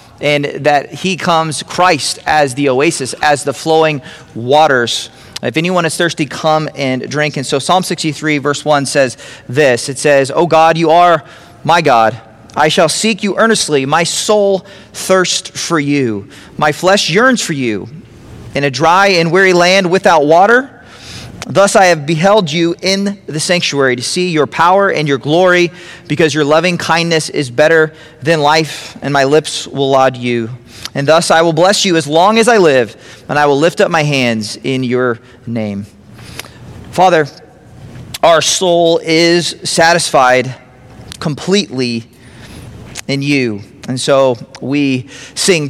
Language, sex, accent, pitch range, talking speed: English, male, American, 130-170 Hz, 160 wpm